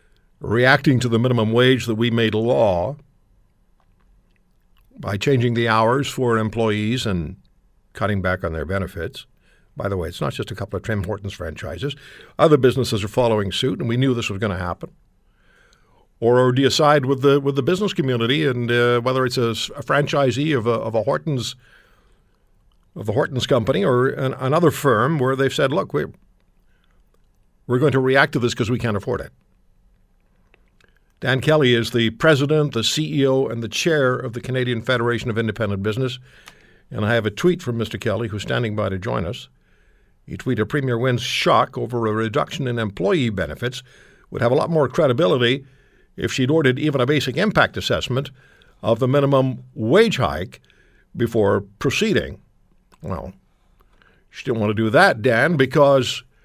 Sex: male